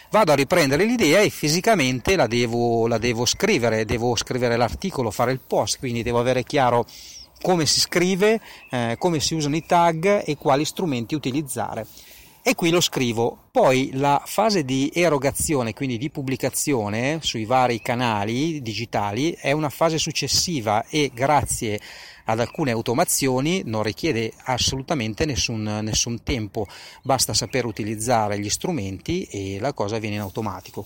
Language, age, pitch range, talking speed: Italian, 30-49, 115-150 Hz, 145 wpm